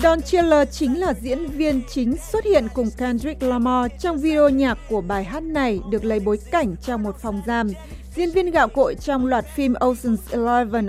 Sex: female